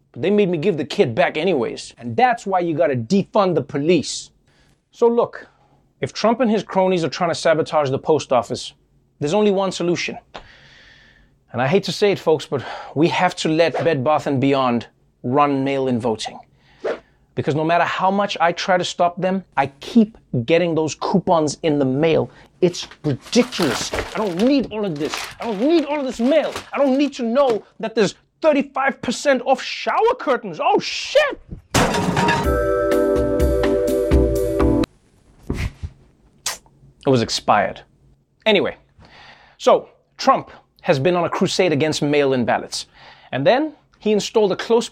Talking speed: 160 wpm